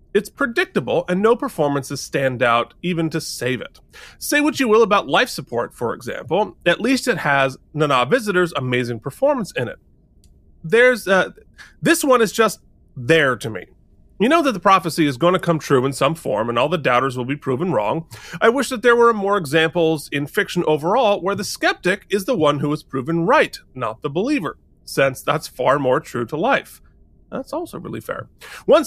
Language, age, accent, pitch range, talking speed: English, 30-49, American, 145-230 Hz, 195 wpm